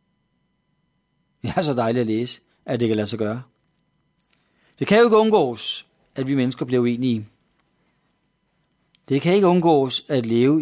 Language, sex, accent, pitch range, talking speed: Danish, male, native, 125-170 Hz, 160 wpm